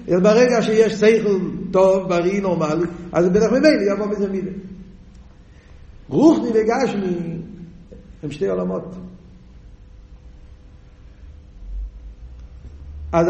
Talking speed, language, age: 90 wpm, Hebrew, 50-69